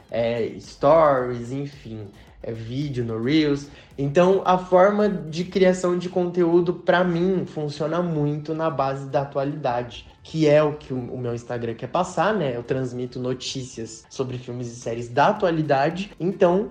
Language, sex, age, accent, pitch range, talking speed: Portuguese, male, 20-39, Brazilian, 135-175 Hz, 150 wpm